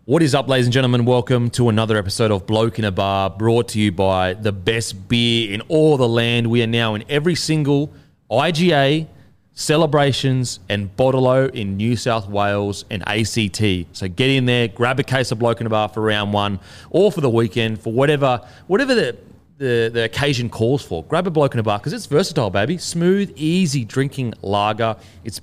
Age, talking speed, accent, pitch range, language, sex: 30-49, 200 wpm, Australian, 110-145 Hz, English, male